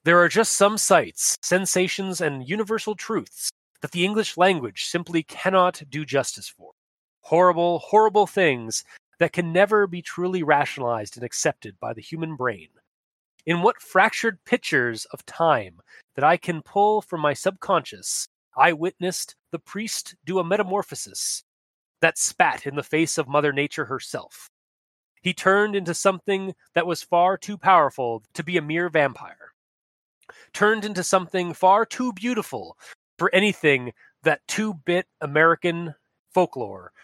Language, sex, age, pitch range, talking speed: English, male, 30-49, 150-190 Hz, 145 wpm